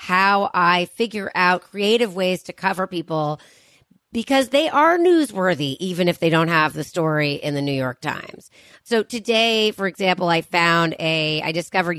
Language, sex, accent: English, female, American